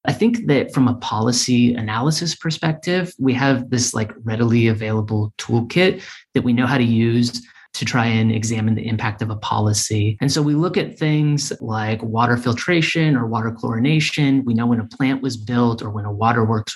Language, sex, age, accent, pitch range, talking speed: English, male, 30-49, American, 115-135 Hz, 190 wpm